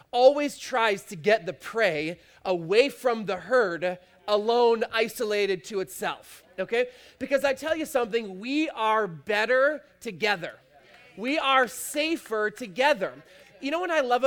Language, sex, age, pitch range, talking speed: English, male, 20-39, 210-270 Hz, 140 wpm